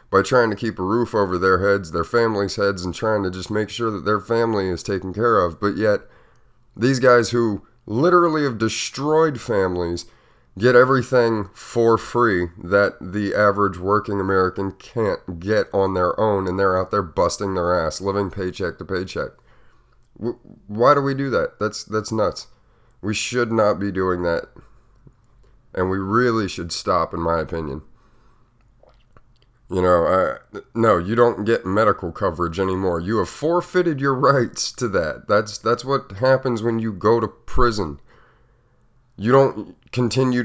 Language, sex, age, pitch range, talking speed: English, male, 30-49, 100-120 Hz, 165 wpm